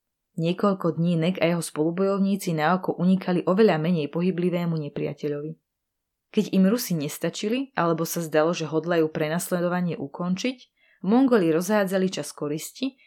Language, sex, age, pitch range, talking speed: Slovak, female, 20-39, 155-195 Hz, 130 wpm